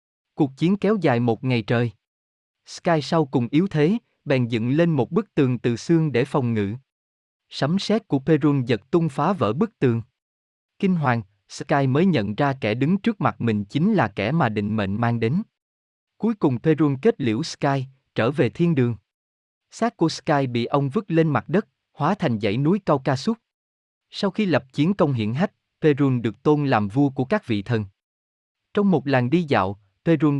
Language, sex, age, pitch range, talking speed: Vietnamese, male, 20-39, 115-160 Hz, 195 wpm